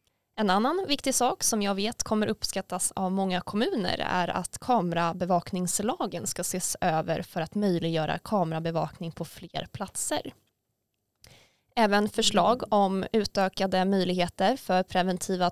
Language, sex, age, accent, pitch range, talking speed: Swedish, female, 20-39, native, 180-220 Hz, 125 wpm